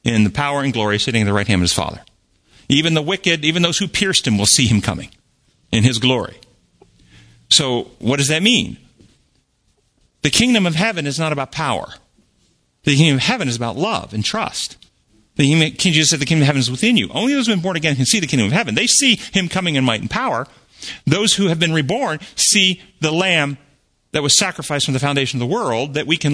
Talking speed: 230 wpm